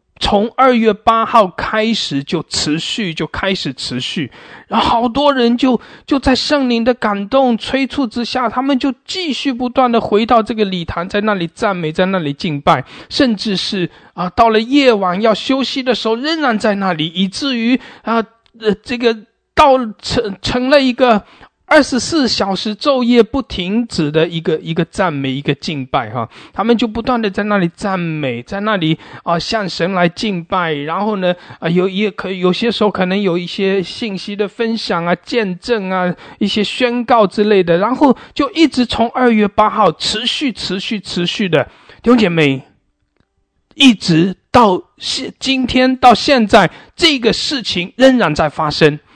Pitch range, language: 180-250 Hz, English